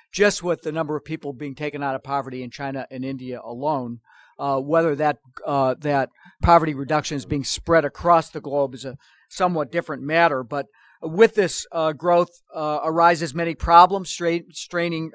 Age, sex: 50-69, male